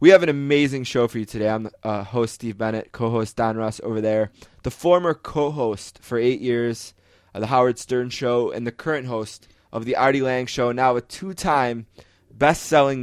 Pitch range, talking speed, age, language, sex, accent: 110-125 Hz, 195 wpm, 20-39, English, male, American